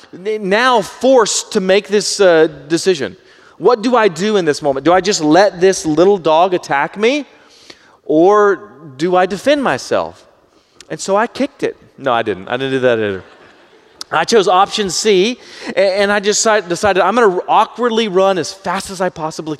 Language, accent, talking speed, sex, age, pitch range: English, American, 180 wpm, male, 30-49, 160-210 Hz